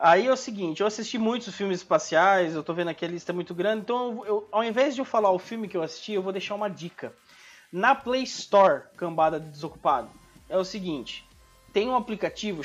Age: 20-39